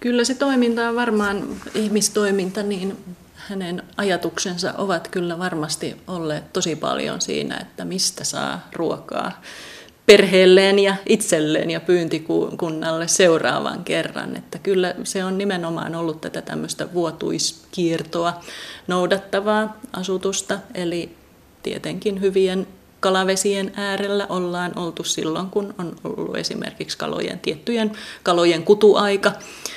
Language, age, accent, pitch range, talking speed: Finnish, 30-49, native, 170-200 Hz, 110 wpm